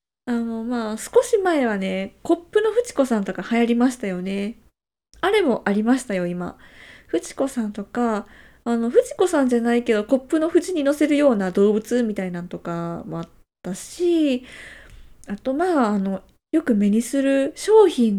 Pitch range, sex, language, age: 210-305 Hz, female, Japanese, 20-39